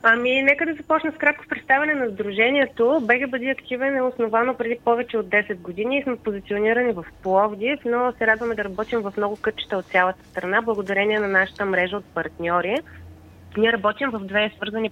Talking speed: 180 wpm